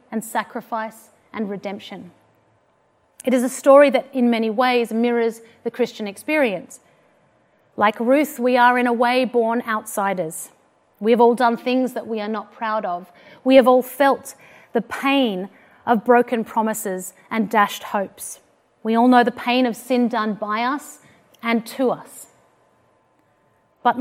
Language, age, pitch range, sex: English, 30-49, 220-255 Hz, female